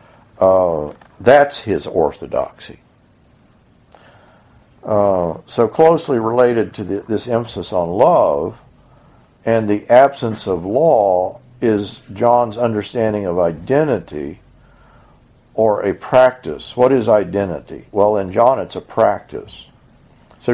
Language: English